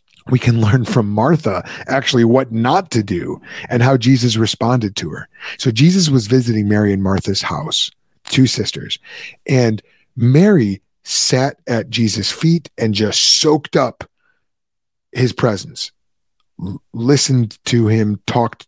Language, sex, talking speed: English, male, 135 wpm